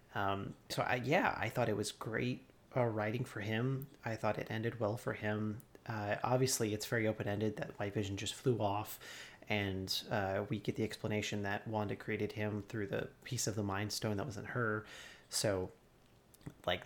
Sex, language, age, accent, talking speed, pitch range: male, English, 30-49, American, 190 wpm, 105-125 Hz